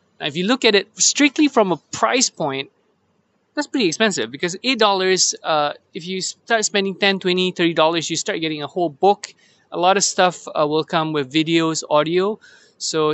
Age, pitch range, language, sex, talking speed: 20-39, 155-205 Hz, English, male, 185 wpm